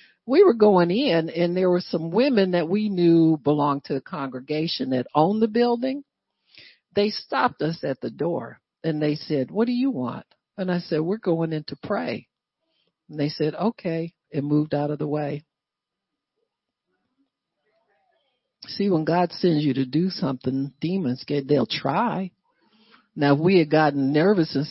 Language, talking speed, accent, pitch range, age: English, 170 wpm, American, 155-225 Hz, 60-79